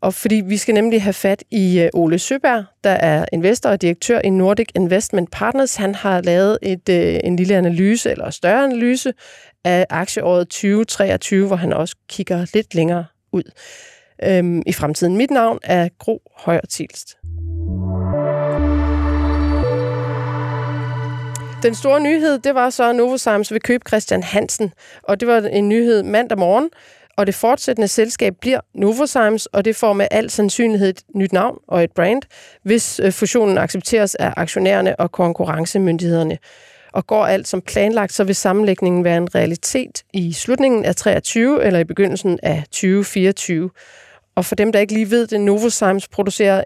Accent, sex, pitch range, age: native, female, 175-220 Hz, 30-49